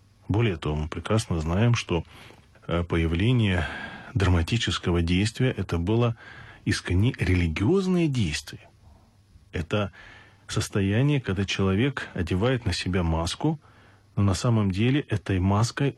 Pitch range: 100-130 Hz